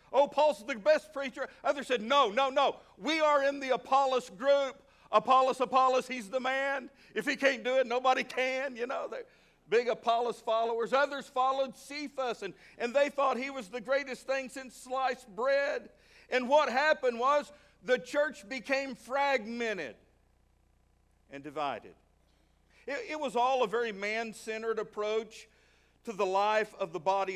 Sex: male